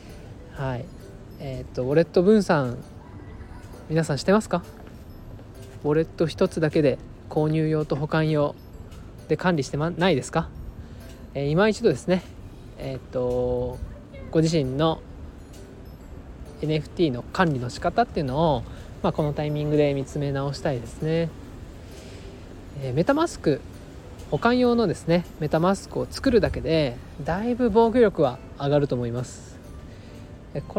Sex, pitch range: male, 125-165 Hz